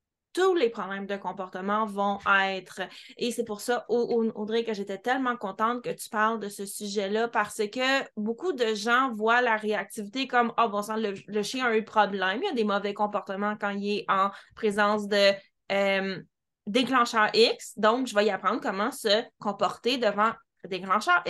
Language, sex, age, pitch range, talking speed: French, female, 20-39, 200-235 Hz, 185 wpm